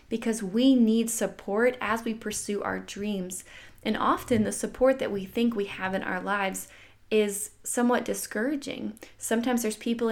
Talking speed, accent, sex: 160 wpm, American, female